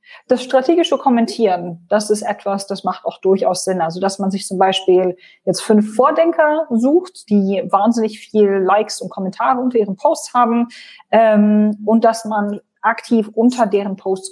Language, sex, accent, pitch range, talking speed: German, female, German, 185-230 Hz, 165 wpm